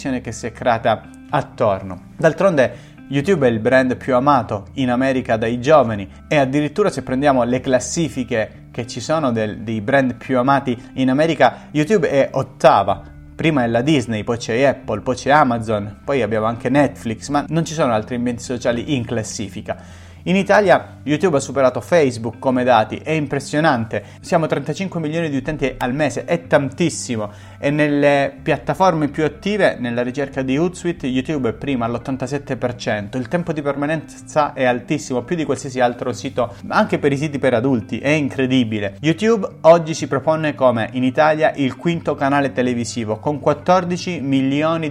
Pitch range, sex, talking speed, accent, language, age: 120-150 Hz, male, 165 wpm, native, Italian, 30-49